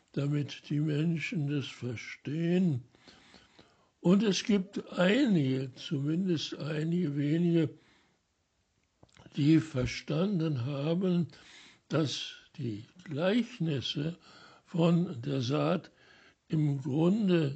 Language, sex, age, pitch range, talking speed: German, male, 60-79, 140-170 Hz, 80 wpm